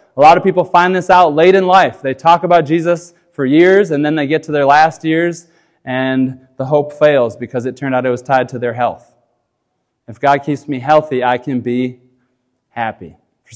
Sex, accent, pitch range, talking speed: male, American, 130-165 Hz, 215 wpm